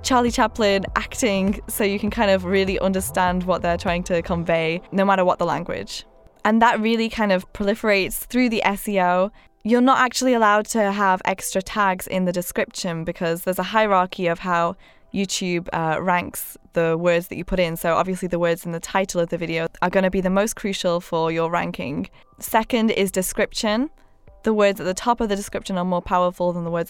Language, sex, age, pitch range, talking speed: English, female, 10-29, 180-215 Hz, 205 wpm